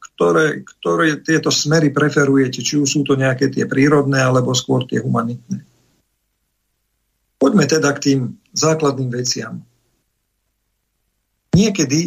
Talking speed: 110 wpm